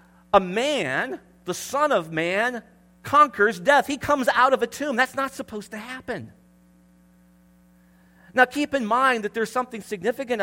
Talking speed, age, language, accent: 155 wpm, 50-69, English, American